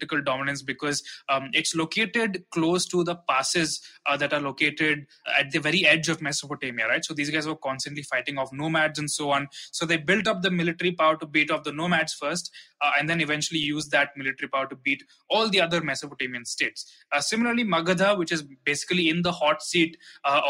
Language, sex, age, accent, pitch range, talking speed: English, male, 20-39, Indian, 140-170 Hz, 205 wpm